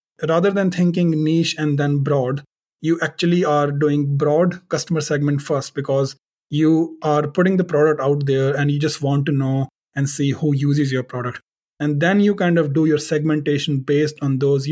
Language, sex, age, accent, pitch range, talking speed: English, male, 30-49, Indian, 140-160 Hz, 190 wpm